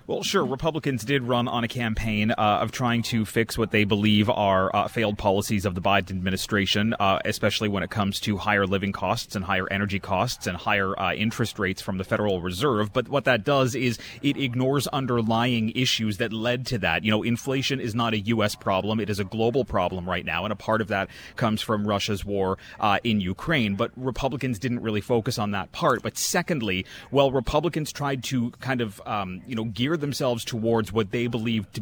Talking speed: 210 wpm